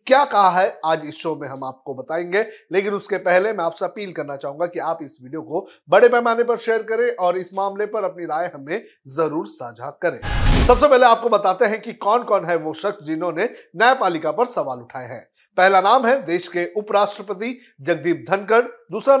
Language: Hindi